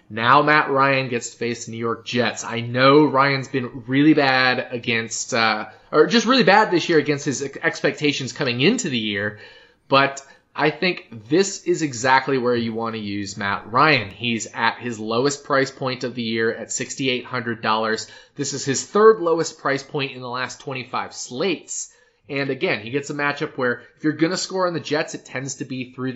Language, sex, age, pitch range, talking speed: English, male, 20-39, 120-155 Hz, 200 wpm